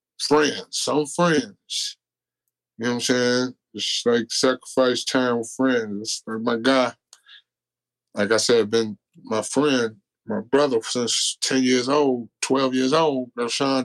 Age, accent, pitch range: 20-39, American, 100-125 Hz